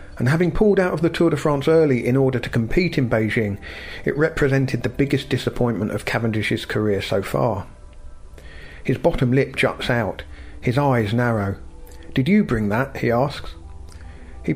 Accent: British